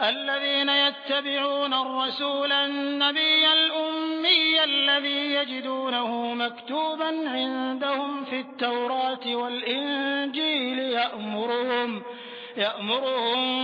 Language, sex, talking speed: Hindi, male, 60 wpm